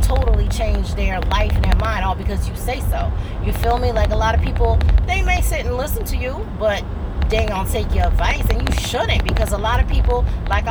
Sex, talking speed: female, 235 wpm